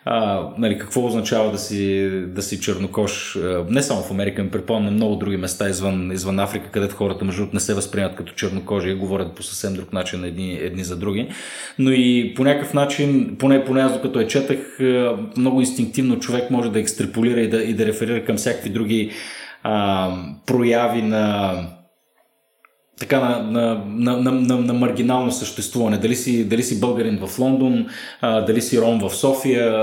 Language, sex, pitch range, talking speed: Bulgarian, male, 105-130 Hz, 175 wpm